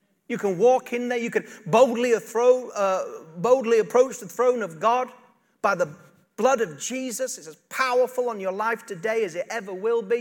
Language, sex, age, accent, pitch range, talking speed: English, male, 40-59, British, 210-260 Hz, 180 wpm